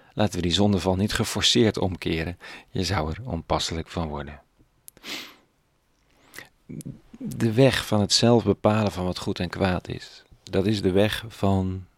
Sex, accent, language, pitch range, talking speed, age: male, Dutch, Dutch, 85-100 Hz, 150 wpm, 40-59